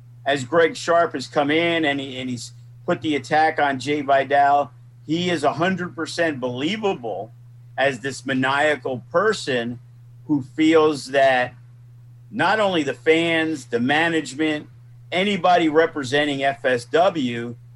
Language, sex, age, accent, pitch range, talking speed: English, male, 50-69, American, 120-160 Hz, 120 wpm